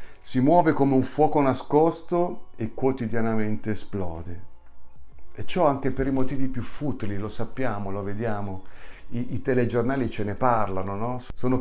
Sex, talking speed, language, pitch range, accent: male, 150 wpm, Italian, 95-130 Hz, native